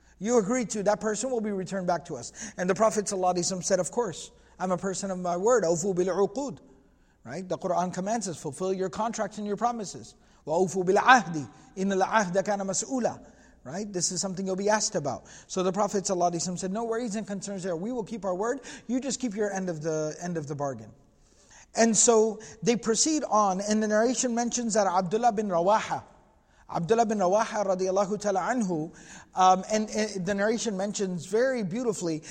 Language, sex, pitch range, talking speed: English, male, 180-220 Hz, 185 wpm